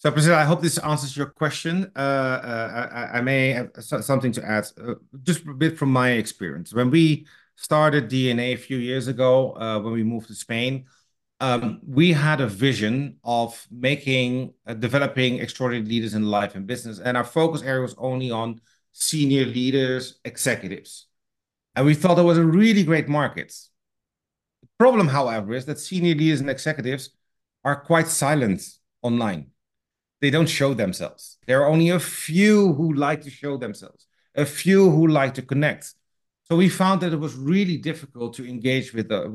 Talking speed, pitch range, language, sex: 175 wpm, 125-160 Hz, English, male